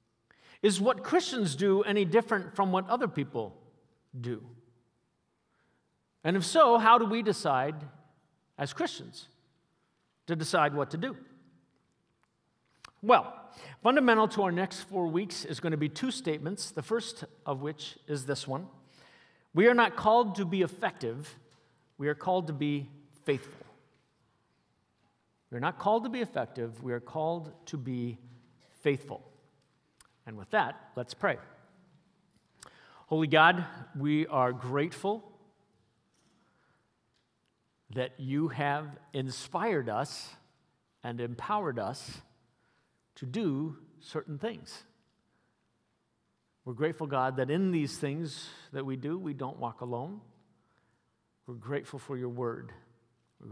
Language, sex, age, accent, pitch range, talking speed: English, male, 50-69, American, 130-185 Hz, 125 wpm